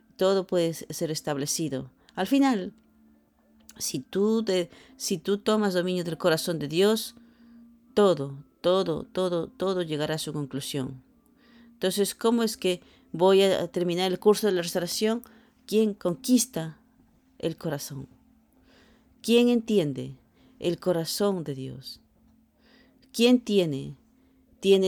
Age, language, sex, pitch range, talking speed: 40-59, English, female, 150-210 Hz, 115 wpm